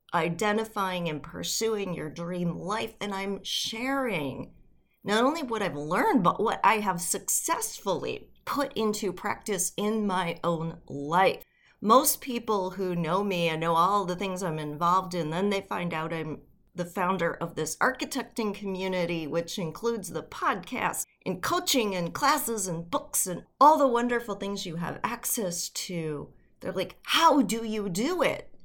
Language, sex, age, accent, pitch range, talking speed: English, female, 40-59, American, 175-245 Hz, 160 wpm